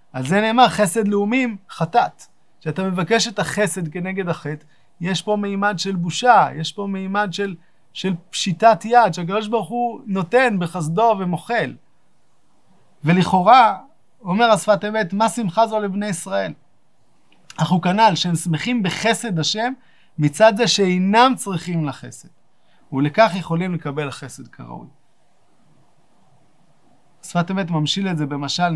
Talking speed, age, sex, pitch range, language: 125 wpm, 30-49, male, 160-210 Hz, Hebrew